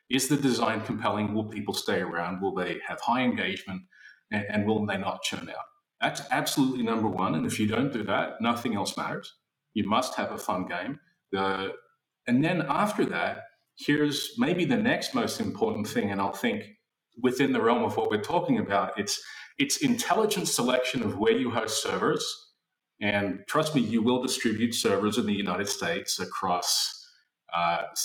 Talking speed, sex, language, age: 180 wpm, male, English, 30-49